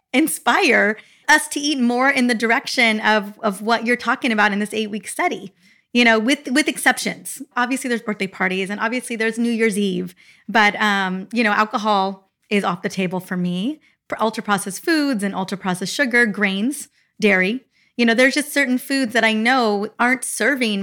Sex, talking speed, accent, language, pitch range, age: female, 180 wpm, American, English, 200-255 Hz, 30-49